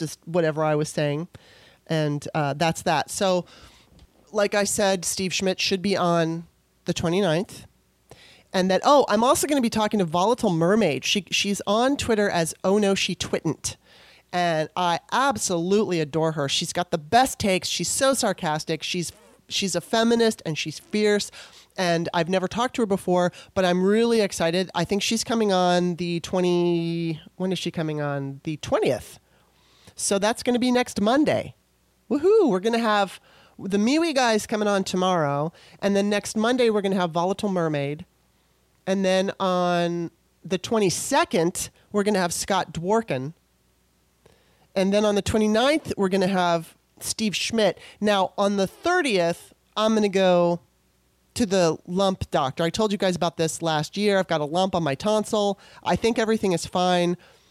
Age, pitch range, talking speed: 30-49, 165-210 Hz, 175 wpm